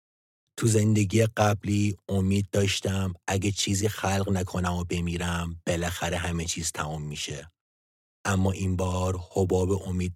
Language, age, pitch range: English, 30-49, 80-95 Hz